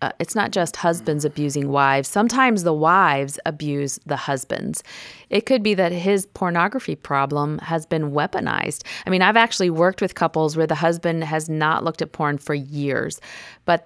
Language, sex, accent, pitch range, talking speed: English, female, American, 145-180 Hz, 180 wpm